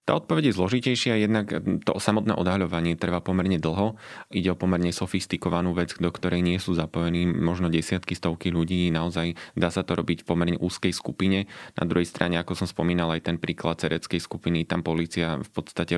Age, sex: 20-39, male